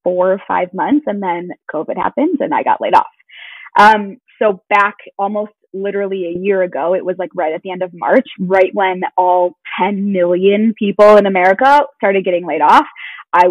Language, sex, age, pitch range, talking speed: English, female, 20-39, 190-225 Hz, 190 wpm